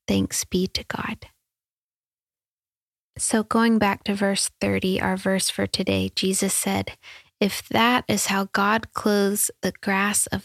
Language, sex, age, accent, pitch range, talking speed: English, female, 10-29, American, 170-200 Hz, 145 wpm